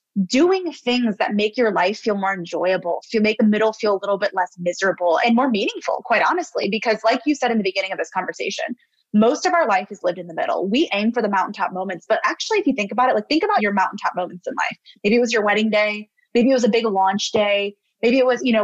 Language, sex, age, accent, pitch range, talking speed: English, female, 20-39, American, 205-290 Hz, 265 wpm